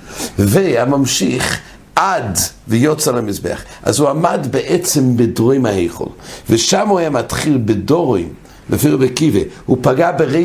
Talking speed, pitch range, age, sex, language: 90 wpm, 115-165 Hz, 60-79, male, English